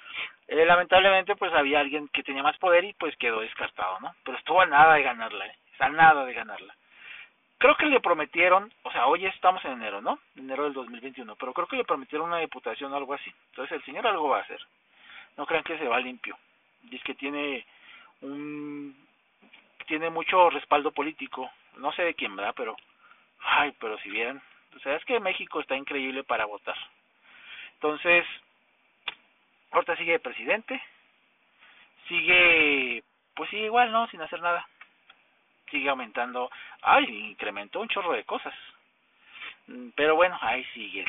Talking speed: 170 wpm